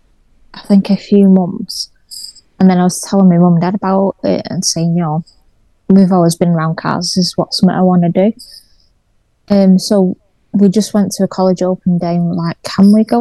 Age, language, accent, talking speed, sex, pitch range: 20-39, English, British, 225 wpm, female, 180-205 Hz